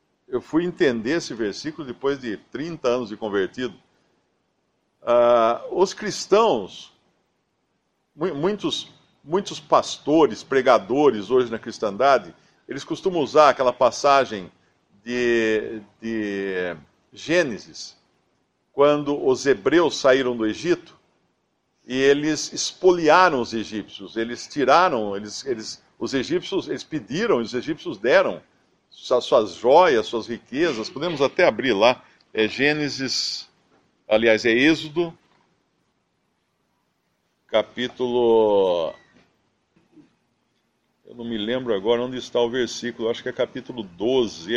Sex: male